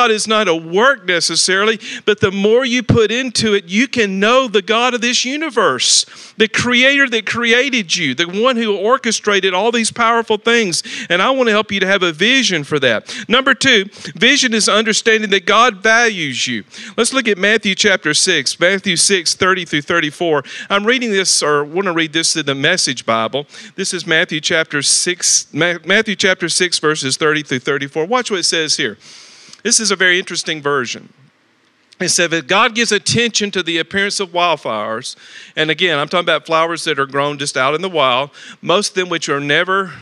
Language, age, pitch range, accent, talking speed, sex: English, 50-69, 160-215 Hz, American, 195 wpm, male